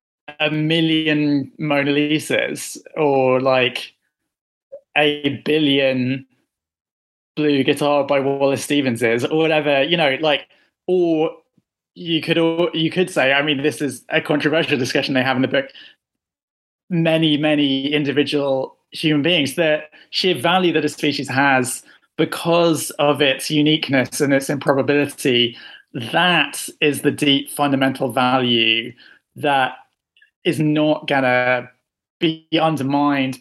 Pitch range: 130-155 Hz